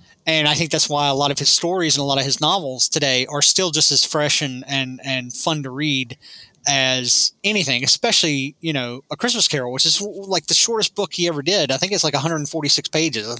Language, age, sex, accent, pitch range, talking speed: English, 30-49, male, American, 135-170 Hz, 250 wpm